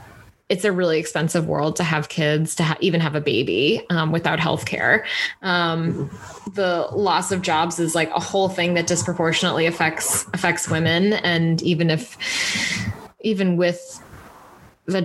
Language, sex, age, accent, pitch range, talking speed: English, female, 20-39, American, 165-195 Hz, 150 wpm